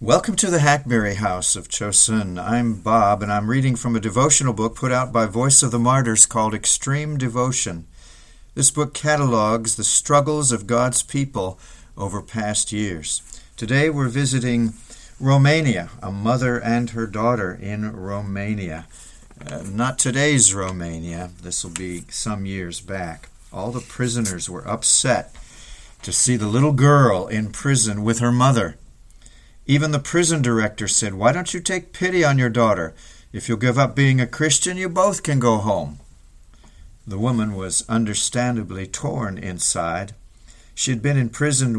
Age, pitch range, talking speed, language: 50-69, 105-140 Hz, 155 wpm, English